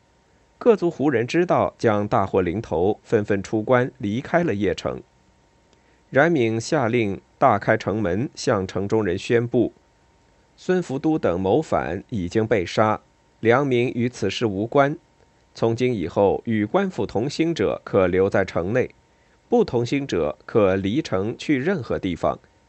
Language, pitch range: Chinese, 105-150 Hz